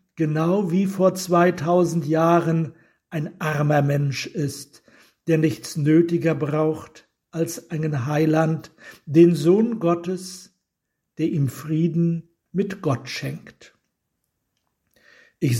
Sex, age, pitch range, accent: male, 60-79, 145-185 Hz, German